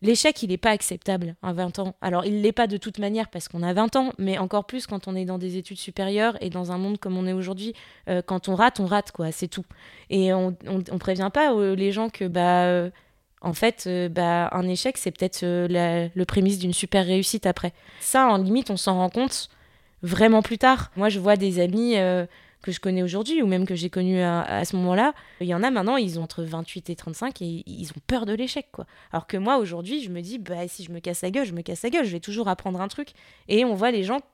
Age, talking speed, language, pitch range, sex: 20-39, 265 wpm, French, 185-225 Hz, female